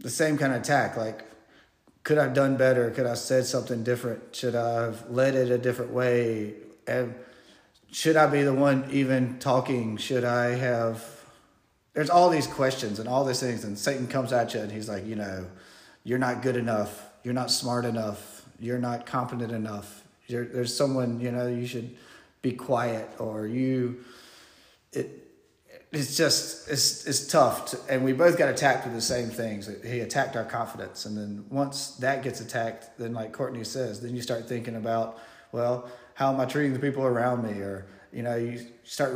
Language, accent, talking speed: English, American, 195 wpm